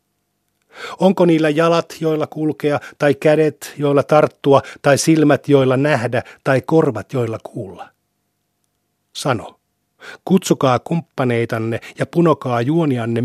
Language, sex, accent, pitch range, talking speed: Finnish, male, native, 125-155 Hz, 105 wpm